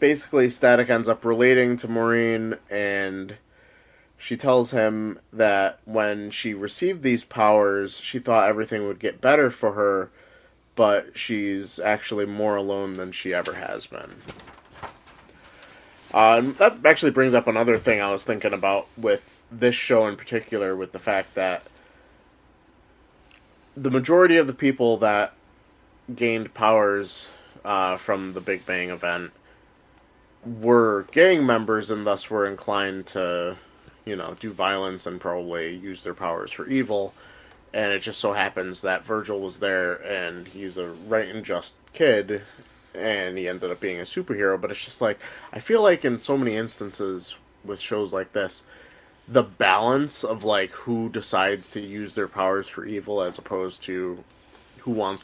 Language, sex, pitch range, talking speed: English, male, 95-115 Hz, 155 wpm